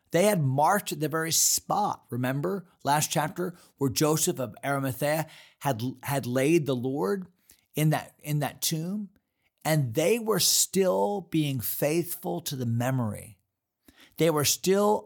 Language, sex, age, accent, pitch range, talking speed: English, male, 40-59, American, 120-165 Hz, 140 wpm